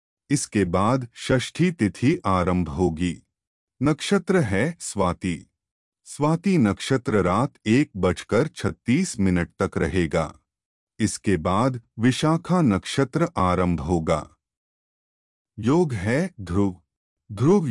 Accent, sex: native, male